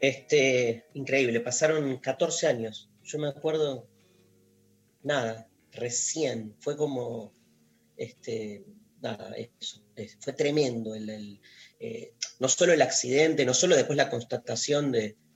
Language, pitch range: Spanish, 115-155 Hz